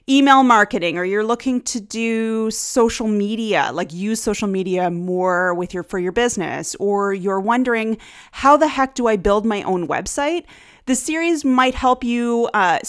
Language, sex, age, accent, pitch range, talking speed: English, female, 30-49, American, 175-245 Hz, 170 wpm